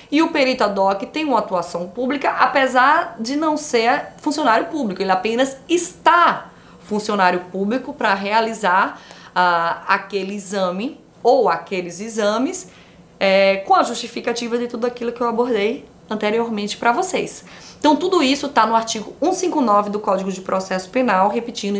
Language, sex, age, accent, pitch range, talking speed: Portuguese, female, 20-39, Brazilian, 195-265 Hz, 150 wpm